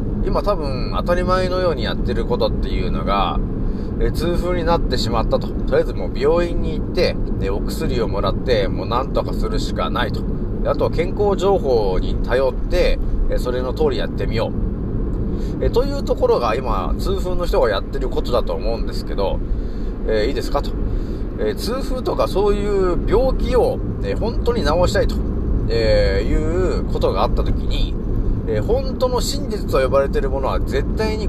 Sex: male